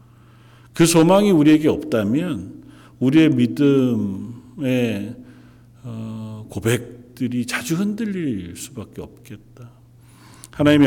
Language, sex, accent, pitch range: Korean, male, native, 110-135 Hz